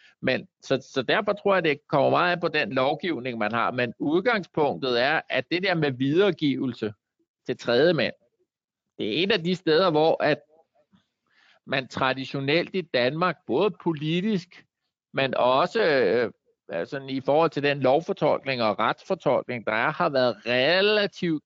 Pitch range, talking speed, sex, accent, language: 125-175 Hz, 160 wpm, male, native, Danish